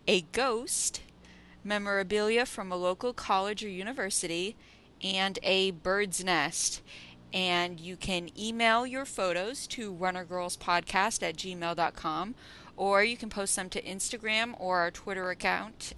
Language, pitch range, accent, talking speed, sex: English, 170-205 Hz, American, 130 wpm, female